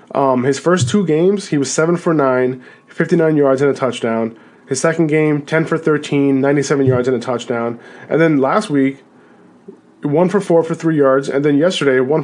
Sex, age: male, 20-39